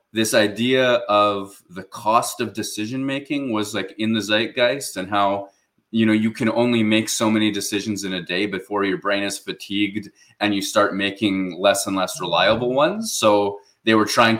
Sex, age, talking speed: male, 20-39, 190 wpm